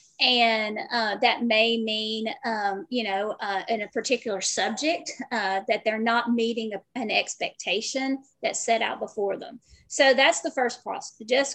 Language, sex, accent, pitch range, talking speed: English, female, American, 225-270 Hz, 165 wpm